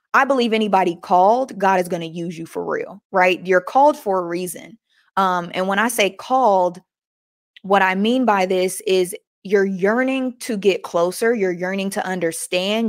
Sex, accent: female, American